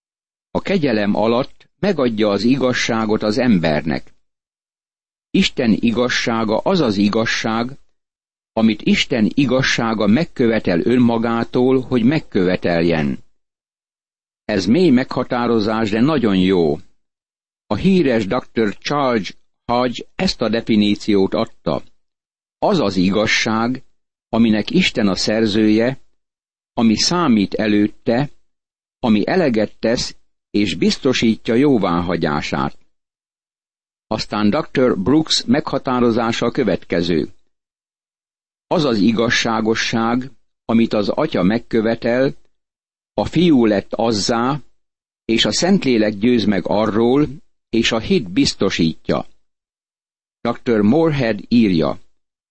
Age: 60-79